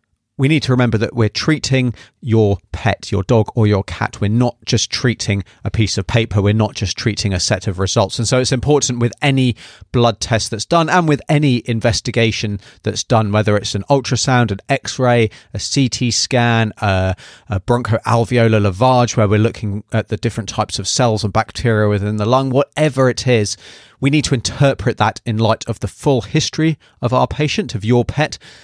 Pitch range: 105-125 Hz